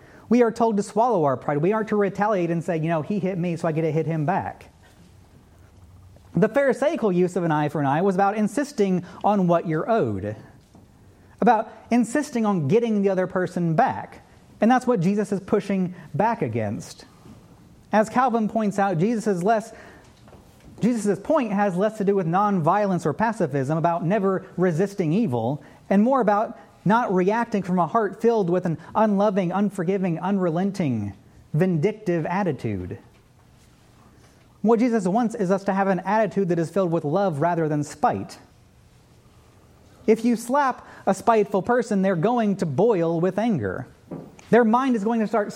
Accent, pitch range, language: American, 165-220 Hz, English